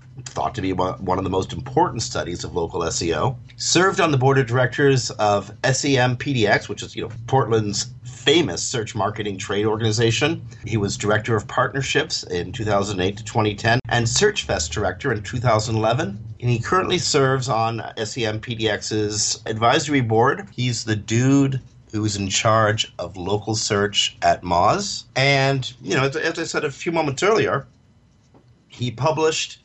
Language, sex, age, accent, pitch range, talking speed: English, male, 50-69, American, 105-130 Hz, 160 wpm